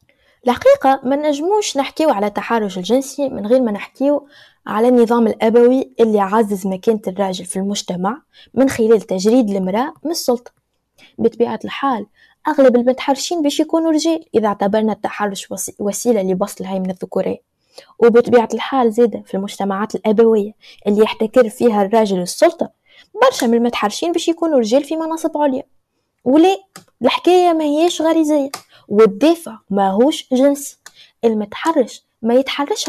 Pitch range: 215-285 Hz